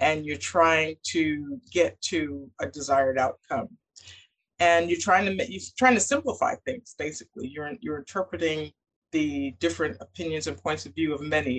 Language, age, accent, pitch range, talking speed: English, 50-69, American, 150-195 Hz, 160 wpm